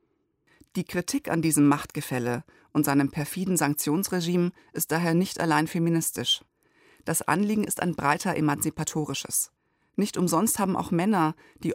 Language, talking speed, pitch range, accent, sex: German, 135 wpm, 150-190 Hz, German, female